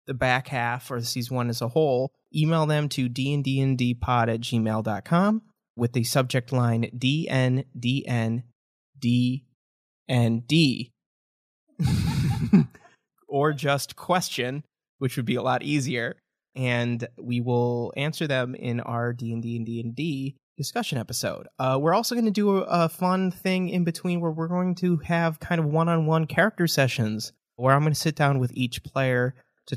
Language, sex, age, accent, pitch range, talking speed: English, male, 20-39, American, 120-160 Hz, 150 wpm